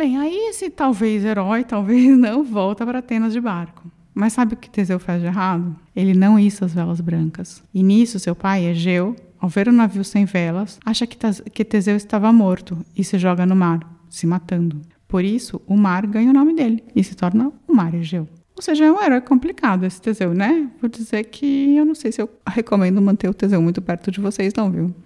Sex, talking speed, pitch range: female, 215 wpm, 185-235 Hz